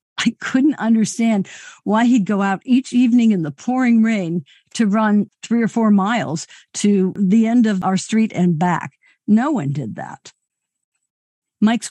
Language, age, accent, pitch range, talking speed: English, 60-79, American, 175-215 Hz, 160 wpm